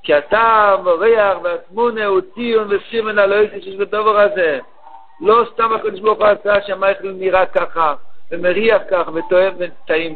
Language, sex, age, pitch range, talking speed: Hebrew, male, 60-79, 185-235 Hz, 140 wpm